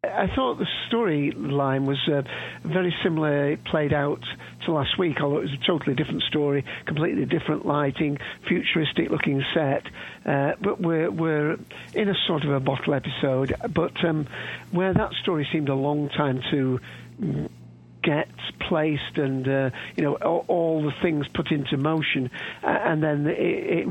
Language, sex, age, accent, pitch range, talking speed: English, male, 60-79, British, 135-165 Hz, 165 wpm